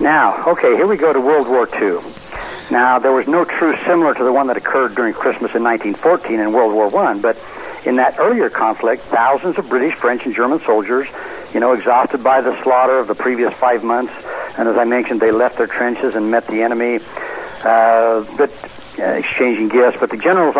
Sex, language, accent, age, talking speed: male, English, American, 60-79, 205 wpm